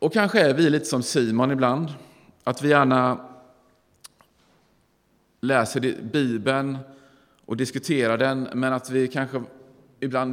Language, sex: Swedish, male